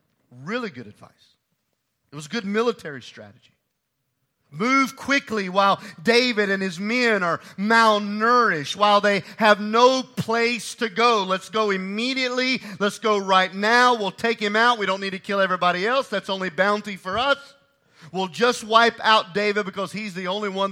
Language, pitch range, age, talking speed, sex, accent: English, 145-220 Hz, 40-59, 170 wpm, male, American